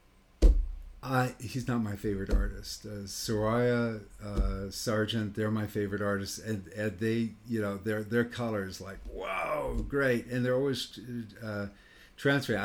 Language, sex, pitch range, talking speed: English, male, 100-115 Hz, 140 wpm